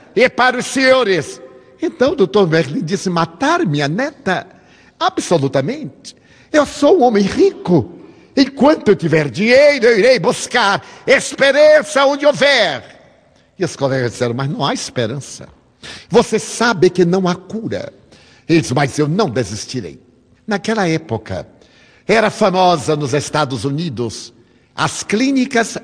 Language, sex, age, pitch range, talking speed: Portuguese, male, 60-79, 135-230 Hz, 130 wpm